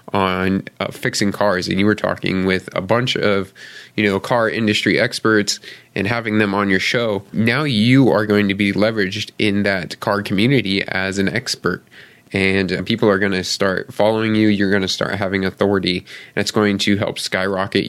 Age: 20-39